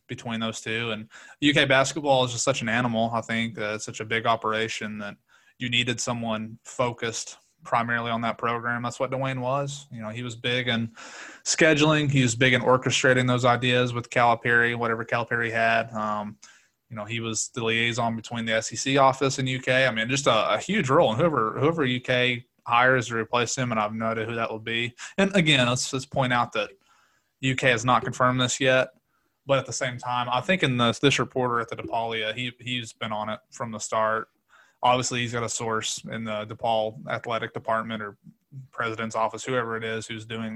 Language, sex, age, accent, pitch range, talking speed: English, male, 20-39, American, 110-130 Hz, 205 wpm